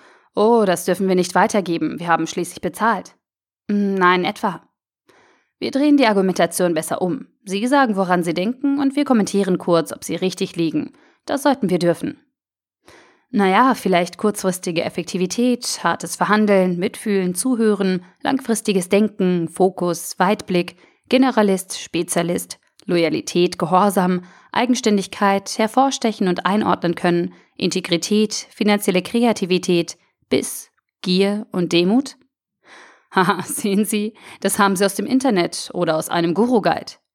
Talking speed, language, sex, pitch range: 125 wpm, German, female, 175-220 Hz